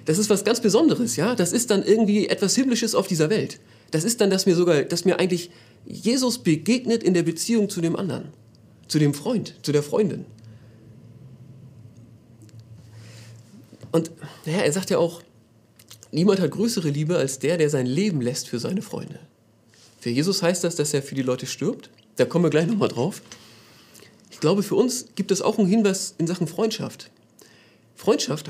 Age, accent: 40-59, German